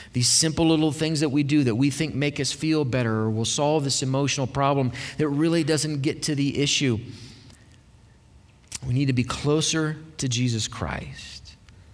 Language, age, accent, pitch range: English, 40-59, American, 120-150 Hz